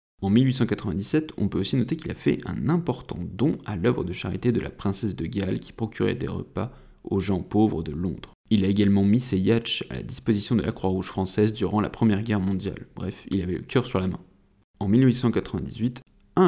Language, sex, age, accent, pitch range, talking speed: French, male, 30-49, French, 95-115 Hz, 210 wpm